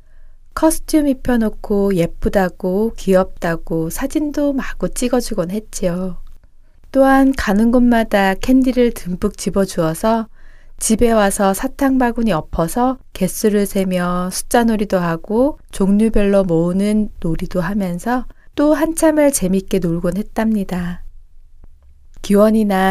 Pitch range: 180-235 Hz